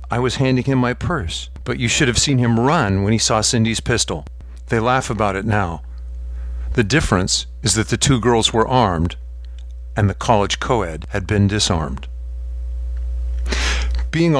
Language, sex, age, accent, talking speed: English, male, 50-69, American, 165 wpm